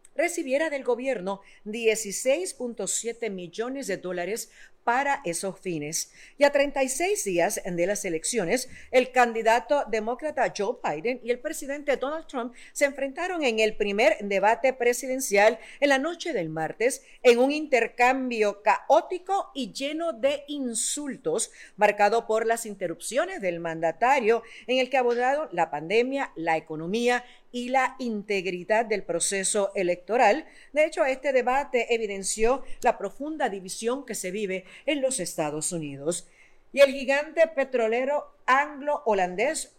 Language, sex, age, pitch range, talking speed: English, female, 50-69, 200-265 Hz, 130 wpm